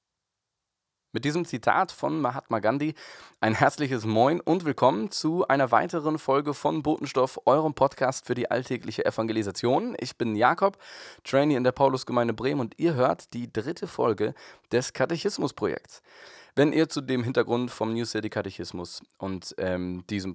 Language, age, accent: German, 20-39, German